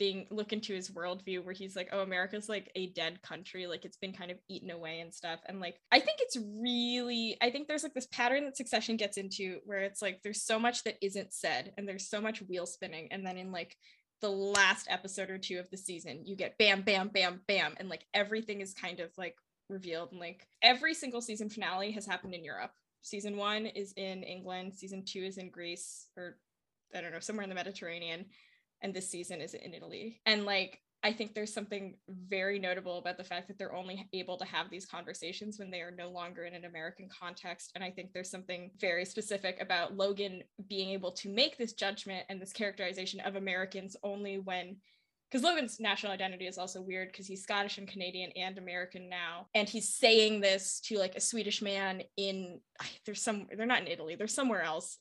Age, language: 10-29, English